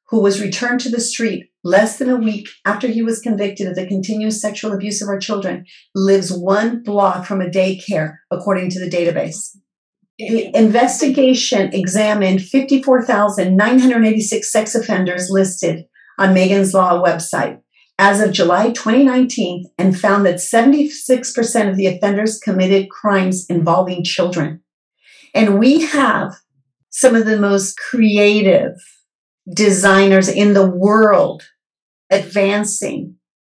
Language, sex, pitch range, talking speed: English, female, 190-240 Hz, 125 wpm